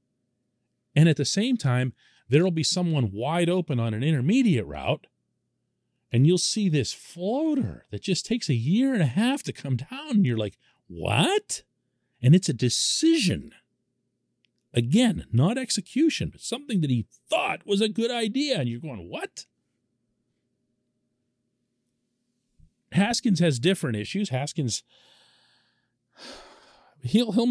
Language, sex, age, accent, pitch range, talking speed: English, male, 40-59, American, 115-160 Hz, 135 wpm